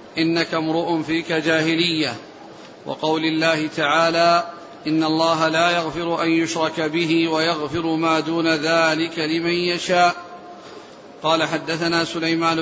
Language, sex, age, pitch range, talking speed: Arabic, male, 40-59, 165-175 Hz, 110 wpm